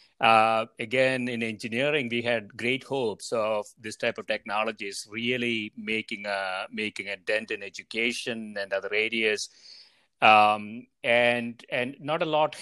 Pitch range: 110-140 Hz